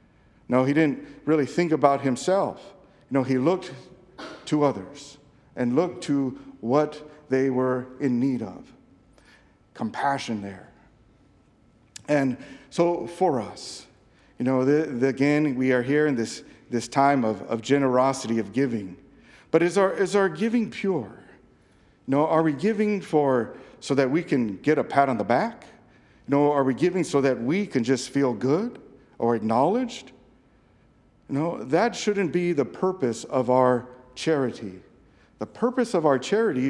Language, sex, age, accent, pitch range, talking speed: English, male, 50-69, American, 130-190 Hz, 150 wpm